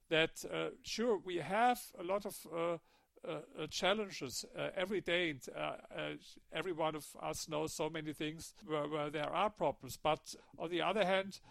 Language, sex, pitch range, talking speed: English, male, 155-195 Hz, 175 wpm